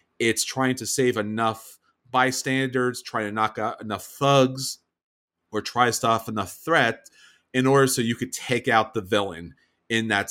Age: 30-49